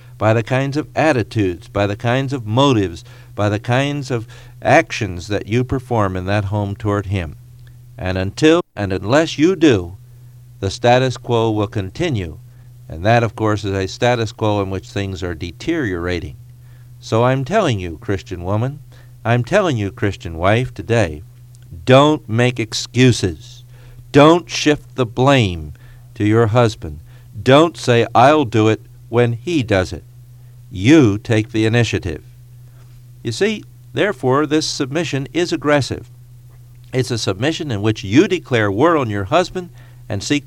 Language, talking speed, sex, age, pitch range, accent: English, 150 wpm, male, 50-69, 105-125 Hz, American